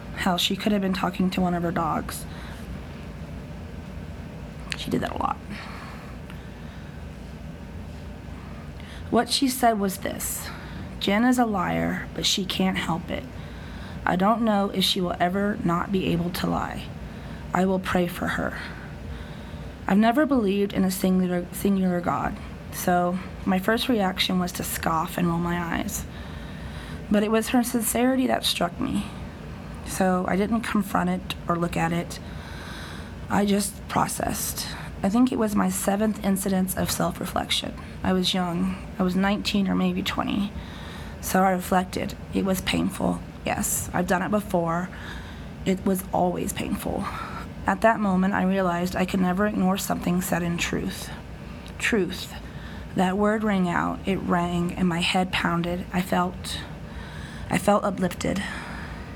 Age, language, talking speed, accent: 20-39, English, 150 wpm, American